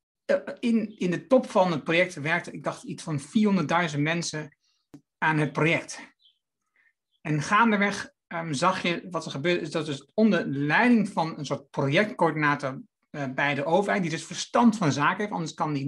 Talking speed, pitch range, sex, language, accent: 180 wpm, 155-215 Hz, male, Dutch, Dutch